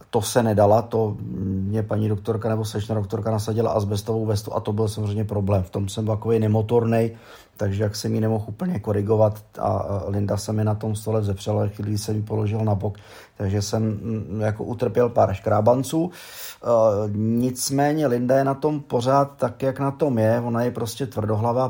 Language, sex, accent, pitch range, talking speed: Czech, male, native, 105-120 Hz, 180 wpm